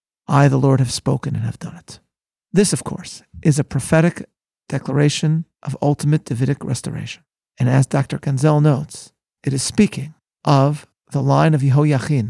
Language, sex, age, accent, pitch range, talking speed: English, male, 40-59, American, 130-150 Hz, 160 wpm